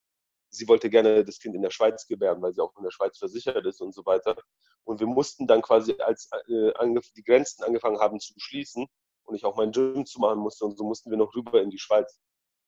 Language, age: German, 30-49